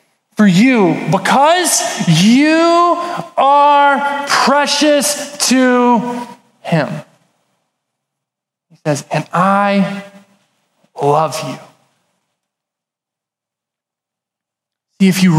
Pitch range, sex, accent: 200-285 Hz, male, American